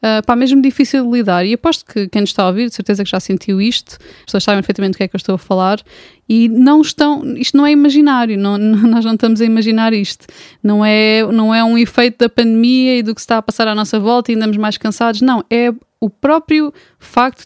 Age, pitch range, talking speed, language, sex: 20-39, 210-250 Hz, 250 wpm, Portuguese, female